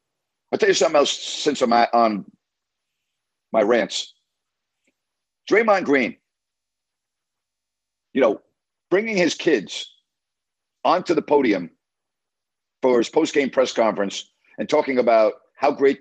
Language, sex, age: English, male, 50-69